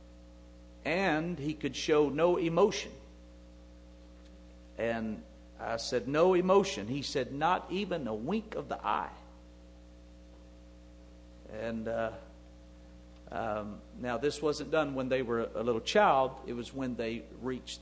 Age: 50-69